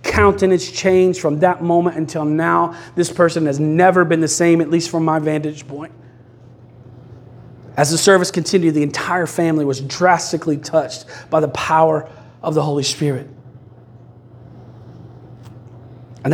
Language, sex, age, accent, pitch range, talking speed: English, male, 30-49, American, 125-185 Hz, 140 wpm